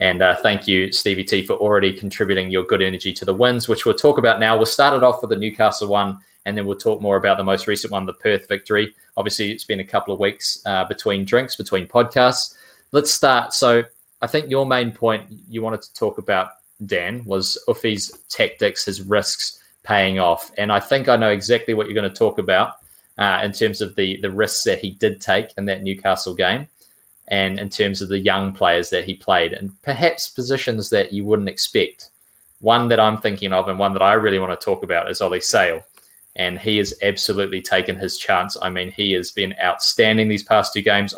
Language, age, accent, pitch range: English, 20-39, Australian, 95-120 Hz